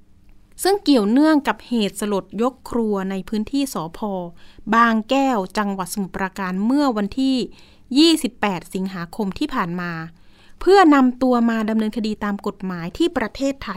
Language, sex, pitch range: Thai, female, 190-255 Hz